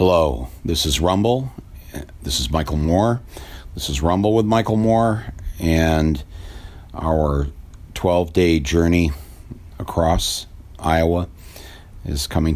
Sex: male